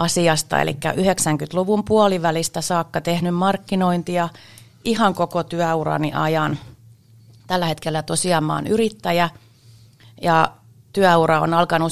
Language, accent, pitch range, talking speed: Finnish, native, 125-170 Hz, 100 wpm